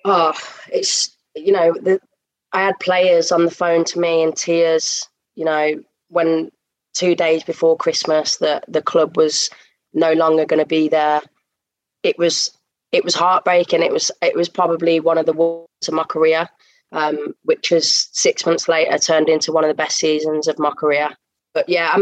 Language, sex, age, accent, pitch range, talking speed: English, female, 20-39, British, 160-190 Hz, 185 wpm